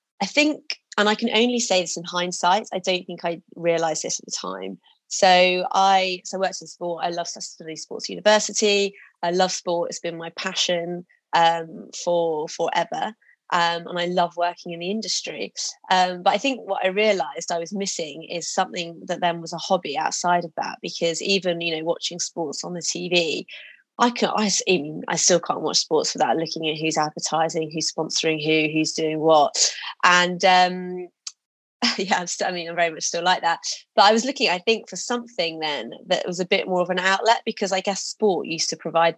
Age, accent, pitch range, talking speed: 30-49, British, 165-190 Hz, 210 wpm